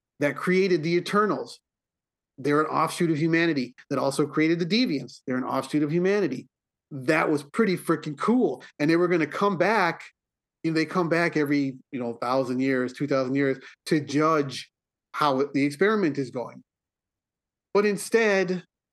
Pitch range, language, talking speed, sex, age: 135-180 Hz, English, 165 wpm, male, 40-59